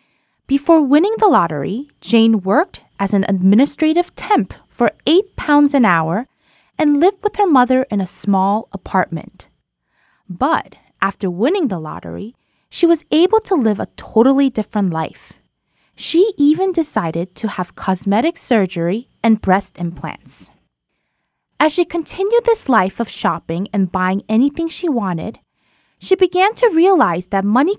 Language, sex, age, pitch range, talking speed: English, female, 20-39, 200-315 Hz, 145 wpm